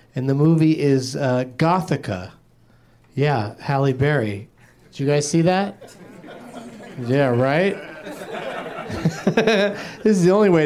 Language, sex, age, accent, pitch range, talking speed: English, male, 30-49, American, 120-160 Hz, 120 wpm